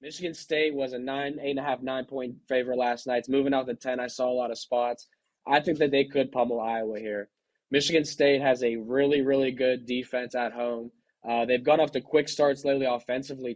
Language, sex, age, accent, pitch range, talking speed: English, male, 20-39, American, 120-135 Hz, 230 wpm